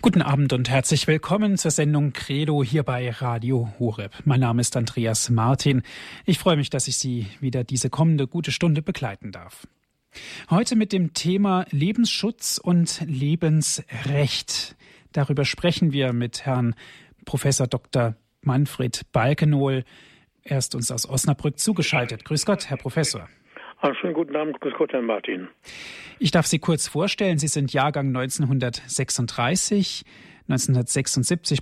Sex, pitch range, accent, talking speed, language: male, 130-160 Hz, German, 135 wpm, German